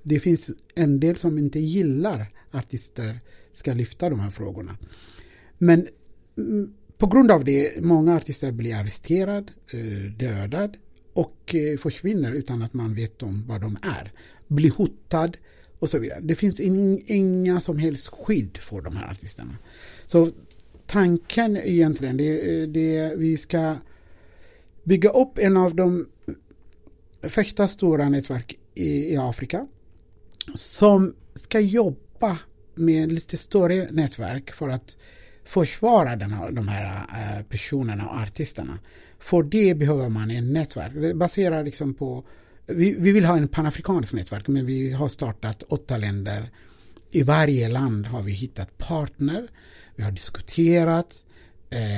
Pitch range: 110-165 Hz